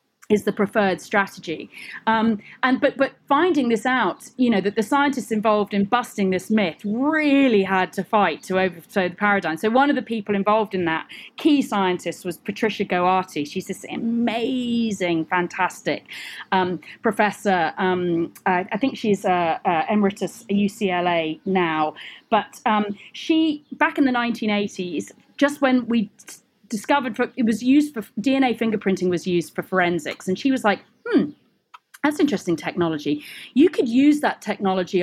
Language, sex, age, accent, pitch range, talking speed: English, female, 30-49, British, 190-250 Hz, 160 wpm